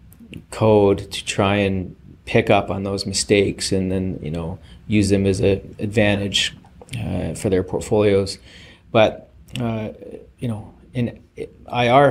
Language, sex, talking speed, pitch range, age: English, male, 140 wpm, 100-110 Hz, 30-49